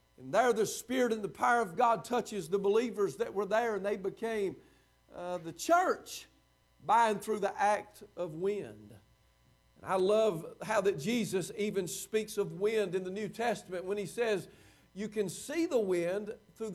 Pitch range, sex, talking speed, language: 190-245 Hz, male, 180 wpm, English